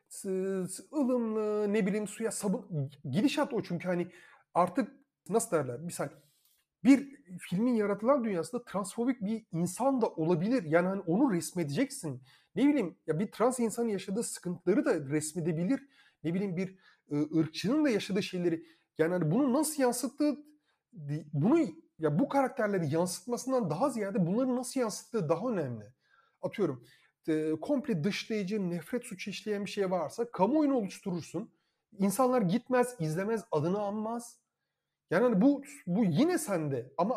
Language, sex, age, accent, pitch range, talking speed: Turkish, male, 30-49, native, 170-250 Hz, 135 wpm